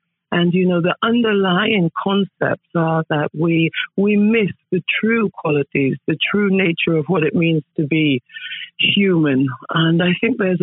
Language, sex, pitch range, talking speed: English, female, 160-200 Hz, 160 wpm